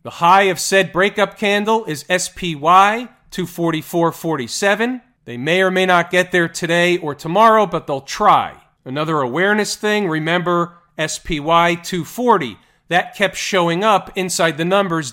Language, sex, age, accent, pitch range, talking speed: English, male, 40-59, American, 155-195 Hz, 140 wpm